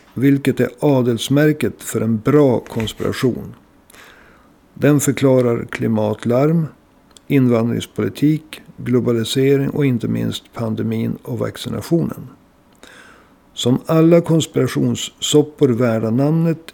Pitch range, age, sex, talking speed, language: 120-145 Hz, 50-69, male, 80 wpm, Swedish